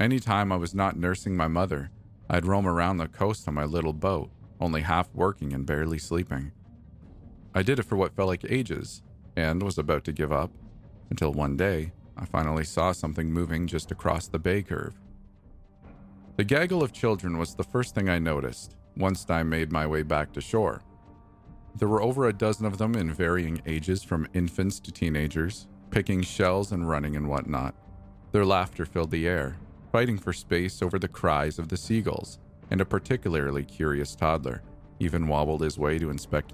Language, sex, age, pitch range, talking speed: English, male, 40-59, 80-100 Hz, 185 wpm